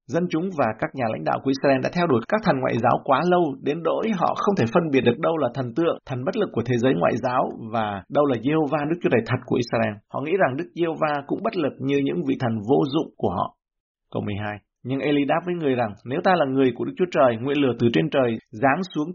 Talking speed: 275 wpm